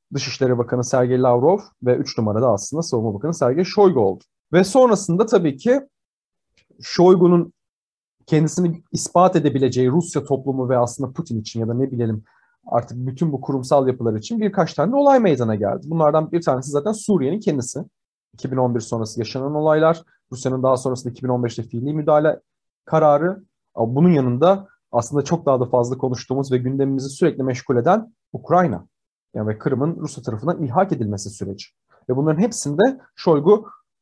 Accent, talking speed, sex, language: native, 150 wpm, male, Turkish